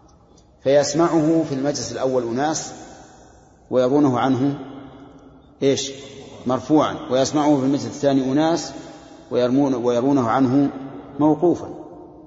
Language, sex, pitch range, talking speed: Arabic, male, 125-150 Hz, 90 wpm